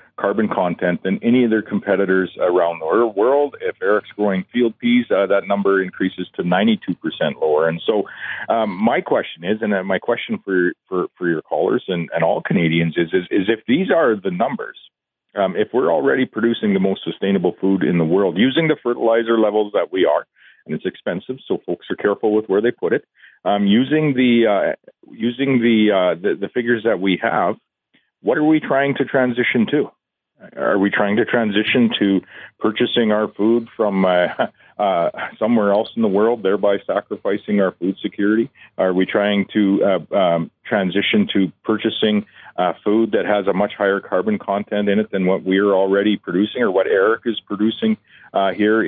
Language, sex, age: English, male, 40-59